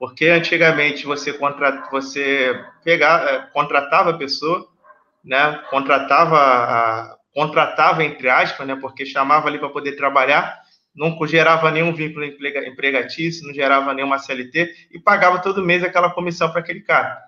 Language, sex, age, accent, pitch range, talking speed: Portuguese, male, 20-39, Brazilian, 145-185 Hz, 140 wpm